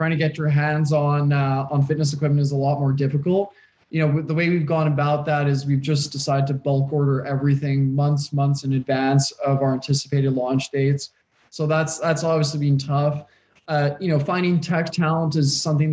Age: 20-39